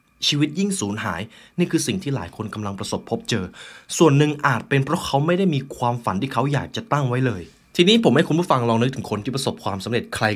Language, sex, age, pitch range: Thai, male, 20-39, 110-160 Hz